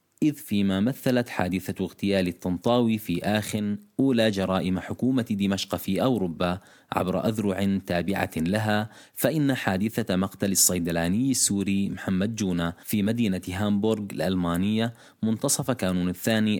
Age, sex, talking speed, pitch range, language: 30-49, male, 115 wpm, 90-110 Hz, Arabic